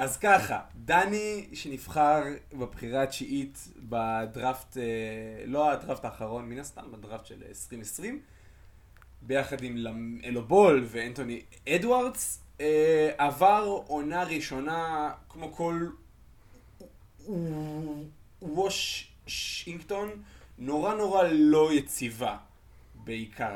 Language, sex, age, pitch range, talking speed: Hebrew, male, 20-39, 120-160 Hz, 80 wpm